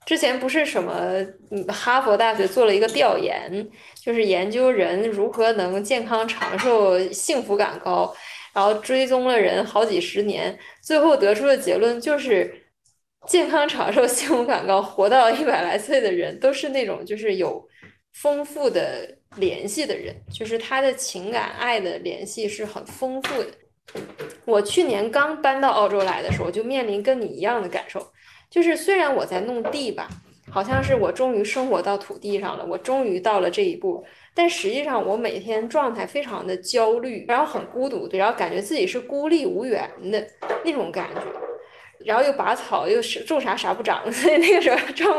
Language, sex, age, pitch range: Chinese, female, 20-39, 210-350 Hz